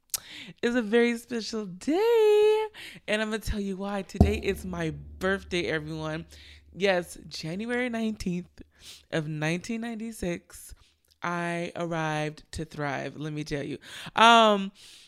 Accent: American